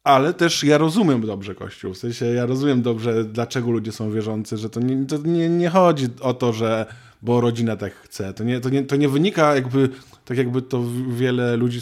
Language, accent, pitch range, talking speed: Polish, native, 120-145 Hz, 195 wpm